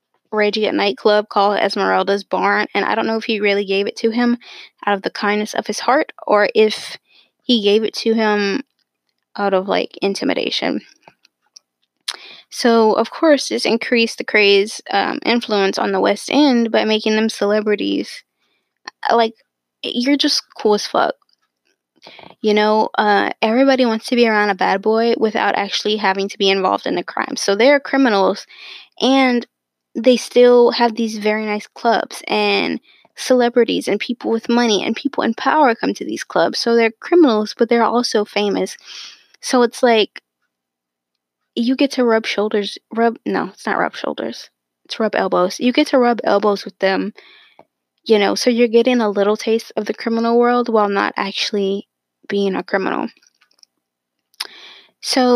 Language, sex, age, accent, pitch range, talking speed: English, female, 10-29, American, 205-245 Hz, 165 wpm